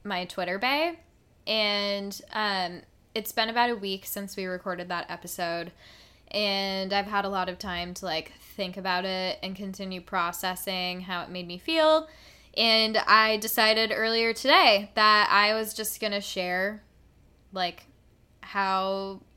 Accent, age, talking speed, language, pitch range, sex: American, 10-29, 150 wpm, English, 180-205 Hz, female